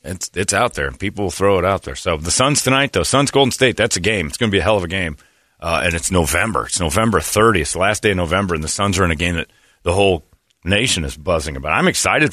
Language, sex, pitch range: English, male, 80-105 Hz